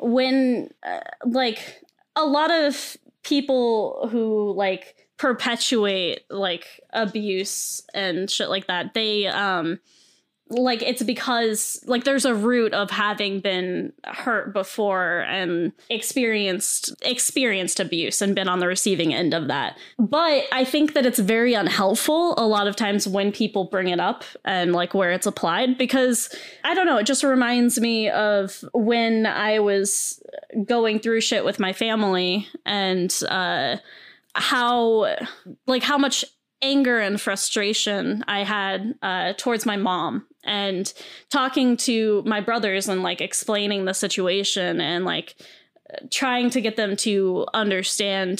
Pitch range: 195-250 Hz